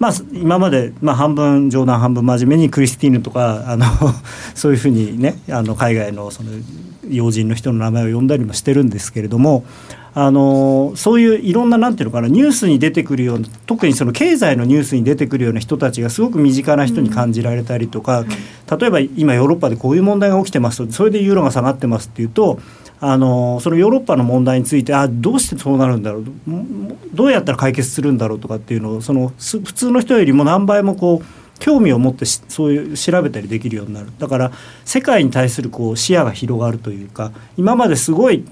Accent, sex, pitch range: native, male, 120-165 Hz